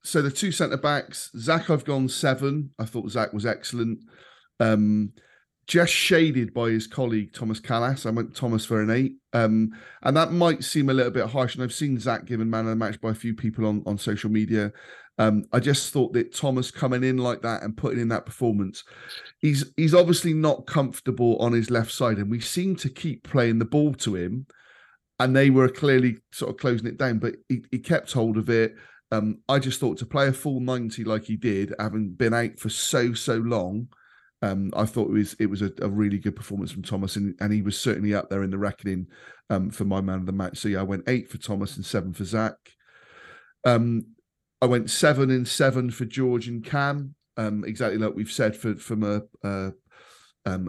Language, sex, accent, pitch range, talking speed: English, male, British, 110-135 Hz, 220 wpm